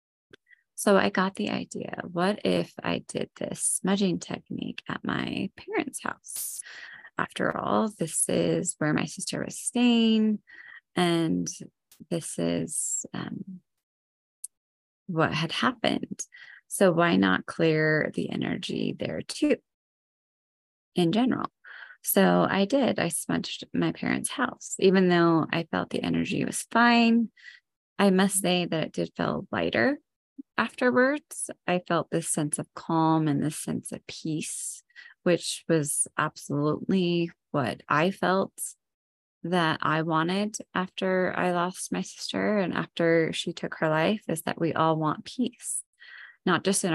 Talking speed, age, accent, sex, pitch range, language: 135 wpm, 20-39, American, female, 165-225 Hz, English